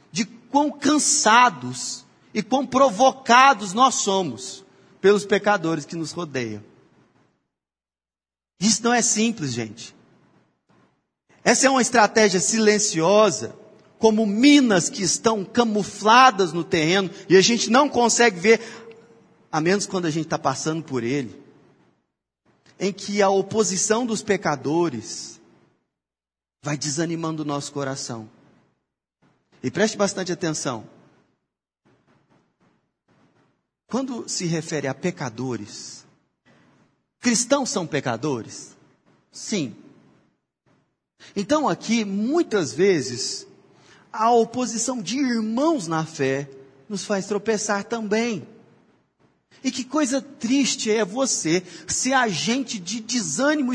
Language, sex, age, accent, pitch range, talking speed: Portuguese, male, 40-59, Brazilian, 160-240 Hz, 105 wpm